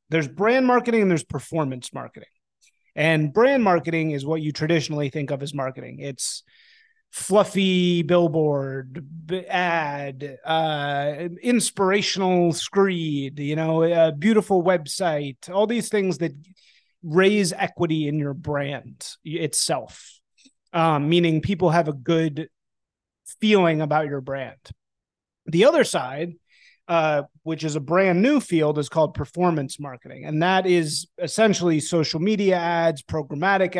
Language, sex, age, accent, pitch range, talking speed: English, male, 30-49, American, 155-185 Hz, 130 wpm